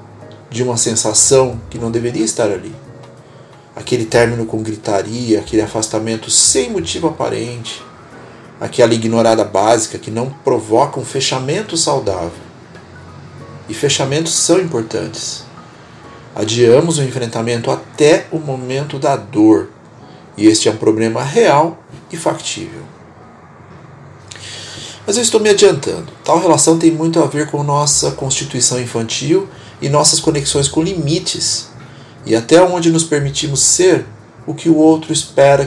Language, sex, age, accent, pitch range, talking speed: Portuguese, male, 40-59, Brazilian, 115-165 Hz, 130 wpm